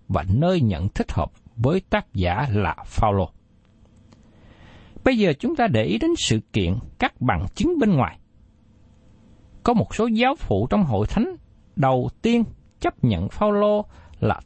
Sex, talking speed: male, 160 wpm